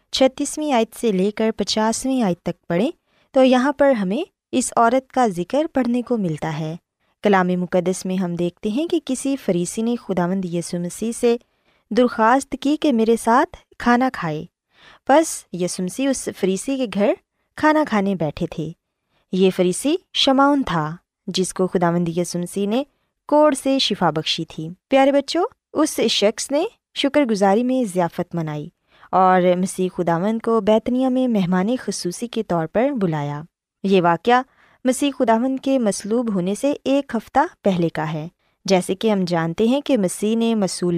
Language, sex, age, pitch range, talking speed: Urdu, female, 20-39, 180-265 Hz, 160 wpm